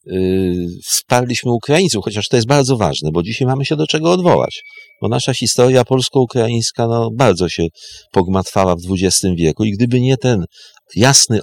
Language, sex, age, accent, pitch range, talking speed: English, male, 50-69, Polish, 95-140 Hz, 160 wpm